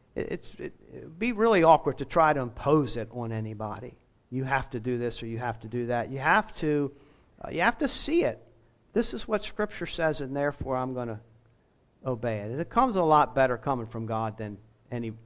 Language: English